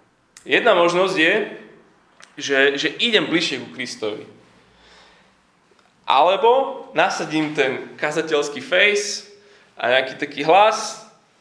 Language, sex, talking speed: Slovak, male, 95 wpm